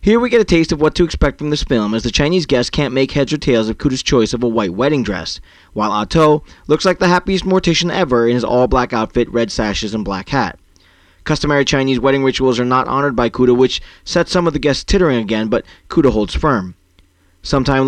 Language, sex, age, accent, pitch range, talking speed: English, male, 20-39, American, 110-150 Hz, 230 wpm